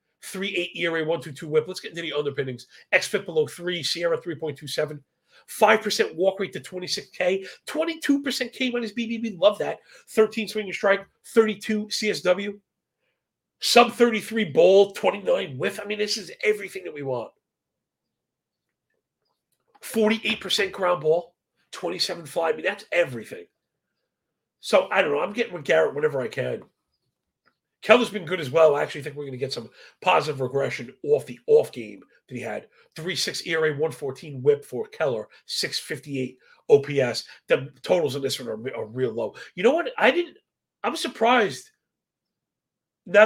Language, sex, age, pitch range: English, male, 40-59, 165-240 Hz